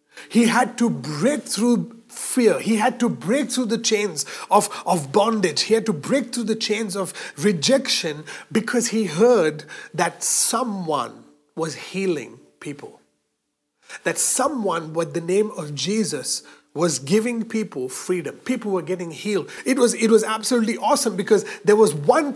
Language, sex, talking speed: English, male, 155 wpm